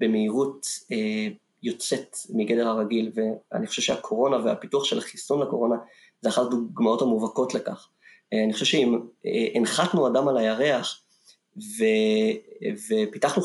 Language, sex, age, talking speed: English, male, 30-49, 115 wpm